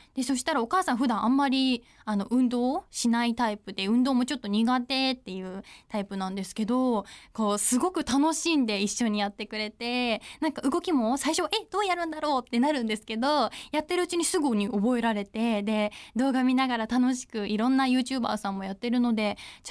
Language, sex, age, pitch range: Japanese, female, 20-39, 220-290 Hz